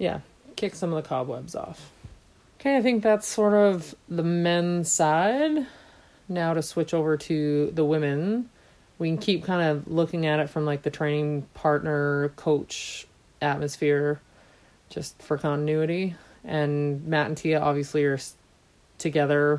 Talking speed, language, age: 145 wpm, English, 30-49